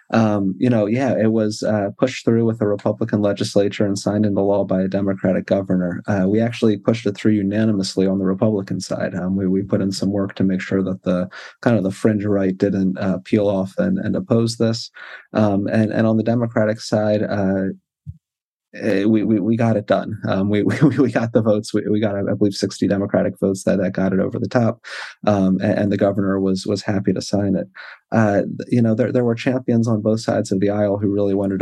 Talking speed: 230 wpm